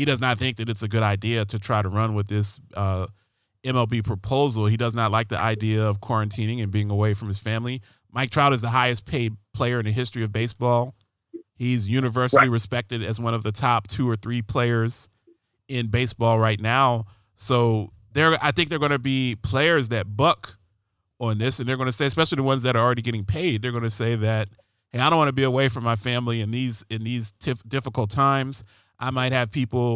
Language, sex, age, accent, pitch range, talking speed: English, male, 30-49, American, 110-135 Hz, 225 wpm